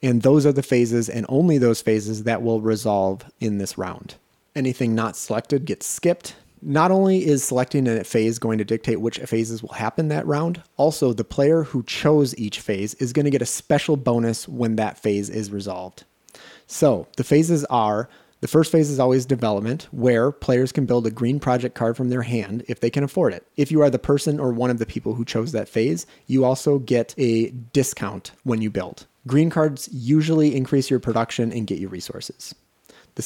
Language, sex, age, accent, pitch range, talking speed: English, male, 30-49, American, 110-145 Hz, 205 wpm